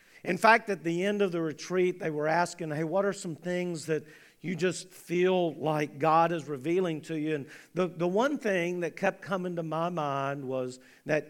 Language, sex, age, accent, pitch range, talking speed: English, male, 50-69, American, 150-200 Hz, 205 wpm